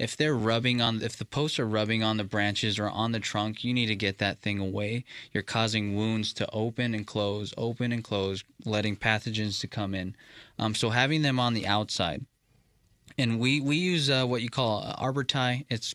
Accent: American